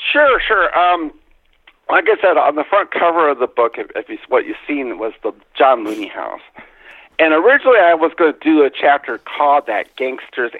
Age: 50-69